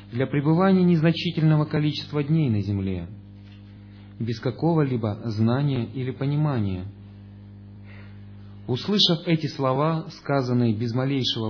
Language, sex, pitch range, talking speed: Russian, male, 100-145 Hz, 95 wpm